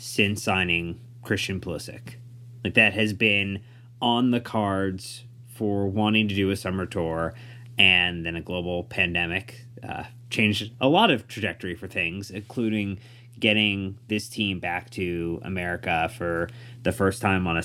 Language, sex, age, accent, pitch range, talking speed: English, male, 30-49, American, 95-120 Hz, 150 wpm